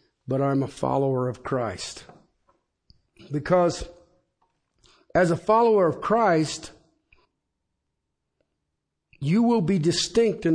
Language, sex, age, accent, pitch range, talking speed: English, male, 60-79, American, 135-180 Hz, 95 wpm